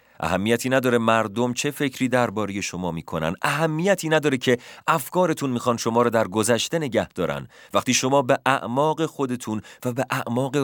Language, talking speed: Persian, 150 wpm